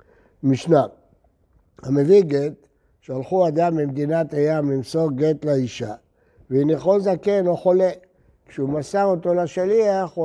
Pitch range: 140-175 Hz